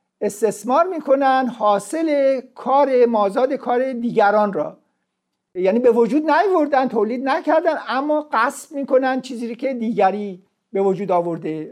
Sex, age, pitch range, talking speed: male, 50-69, 205-265 Hz, 120 wpm